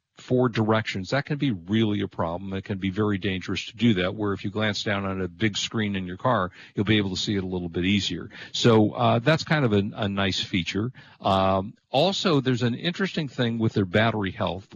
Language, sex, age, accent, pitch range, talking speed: English, male, 50-69, American, 100-125 Hz, 230 wpm